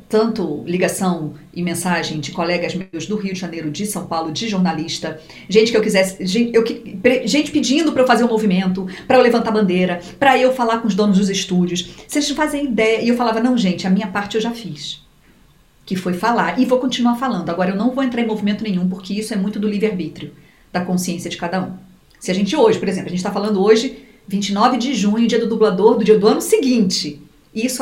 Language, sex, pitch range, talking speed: Portuguese, female, 185-235 Hz, 235 wpm